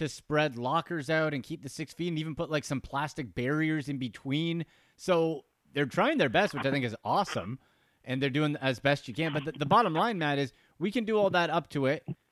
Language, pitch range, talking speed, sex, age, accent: English, 130-165 Hz, 245 wpm, male, 30-49, American